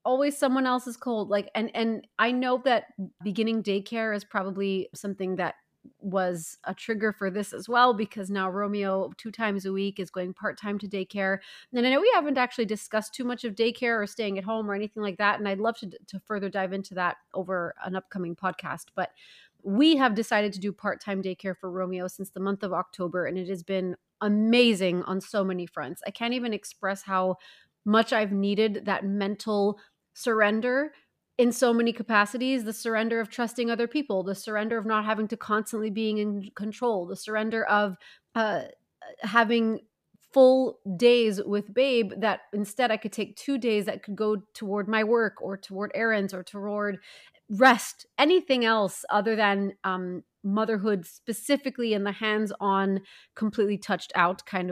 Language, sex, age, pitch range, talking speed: English, female, 30-49, 195-230 Hz, 180 wpm